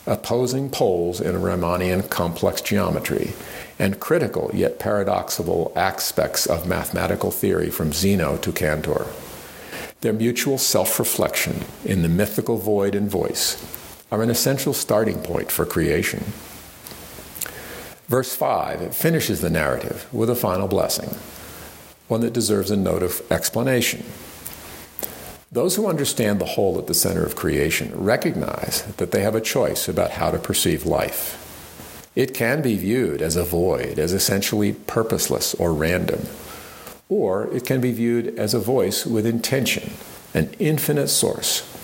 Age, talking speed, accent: 50-69, 140 wpm, American